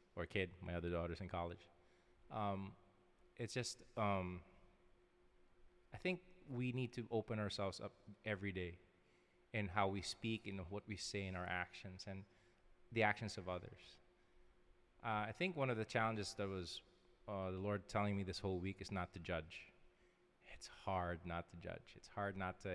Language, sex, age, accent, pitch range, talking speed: English, male, 20-39, American, 90-110 Hz, 180 wpm